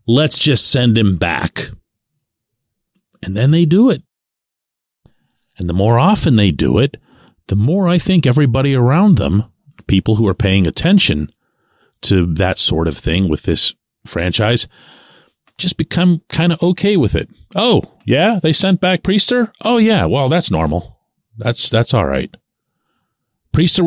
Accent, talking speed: American, 150 wpm